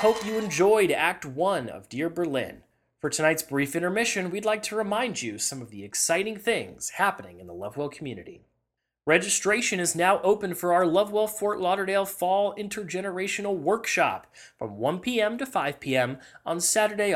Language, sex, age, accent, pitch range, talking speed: English, male, 30-49, American, 145-210 Hz, 165 wpm